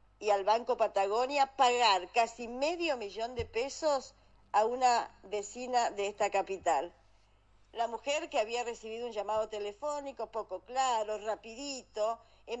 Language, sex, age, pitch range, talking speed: Spanish, female, 40-59, 215-295 Hz, 135 wpm